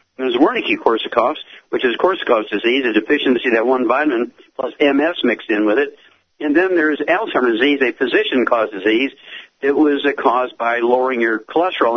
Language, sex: English, male